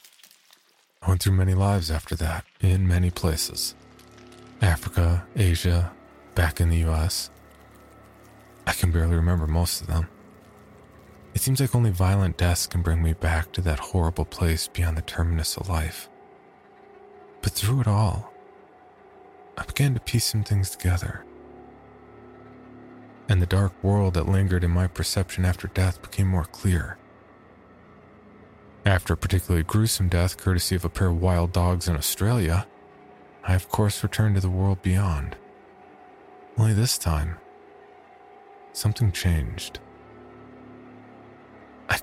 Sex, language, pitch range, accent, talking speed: male, English, 85-105 Hz, American, 135 wpm